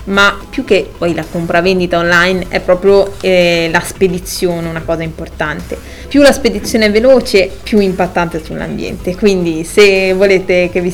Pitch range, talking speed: 175-195 Hz, 160 wpm